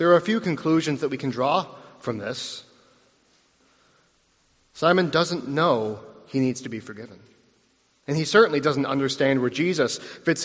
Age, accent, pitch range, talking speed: 40-59, American, 125-180 Hz, 155 wpm